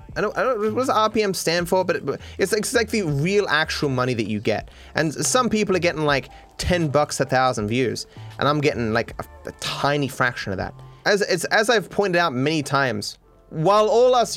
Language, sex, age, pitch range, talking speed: English, male, 30-49, 125-165 Hz, 215 wpm